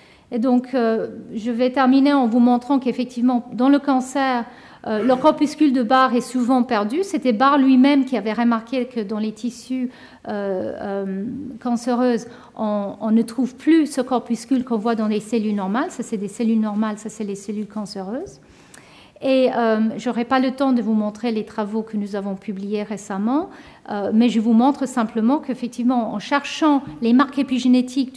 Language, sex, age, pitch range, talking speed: French, female, 50-69, 220-265 Hz, 185 wpm